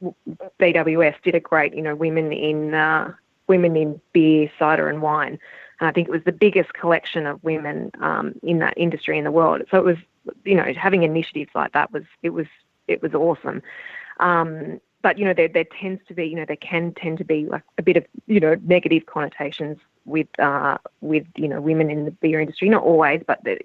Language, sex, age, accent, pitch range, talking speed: English, female, 20-39, Australian, 150-170 Hz, 215 wpm